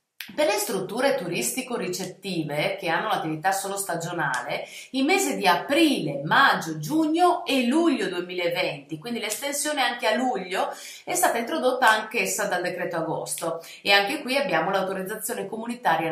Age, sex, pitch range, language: 30-49, female, 180-270 Hz, Italian